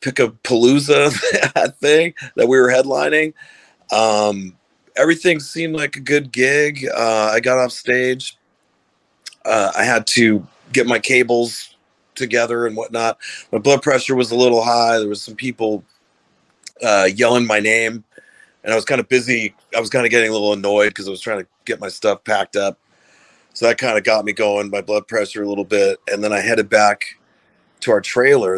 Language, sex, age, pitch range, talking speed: English, male, 40-59, 100-125 Hz, 190 wpm